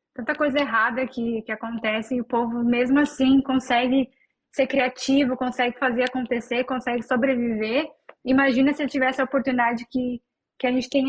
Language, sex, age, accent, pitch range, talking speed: Portuguese, female, 10-29, Brazilian, 230-260 Hz, 160 wpm